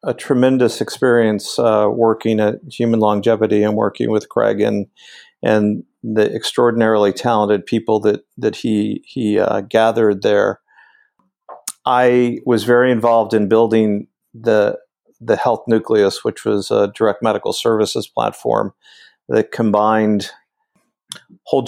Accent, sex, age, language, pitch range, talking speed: American, male, 50-69, English, 105-125 Hz, 125 wpm